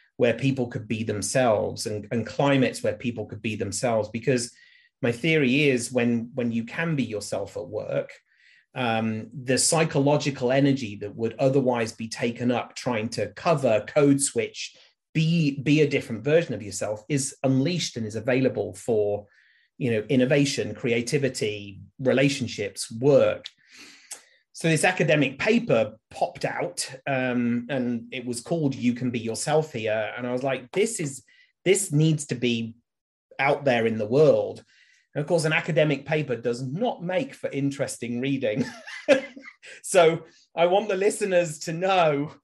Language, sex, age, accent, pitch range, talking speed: English, male, 30-49, British, 120-155 Hz, 155 wpm